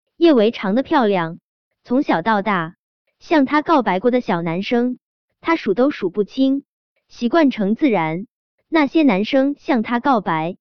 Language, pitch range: Chinese, 195-280 Hz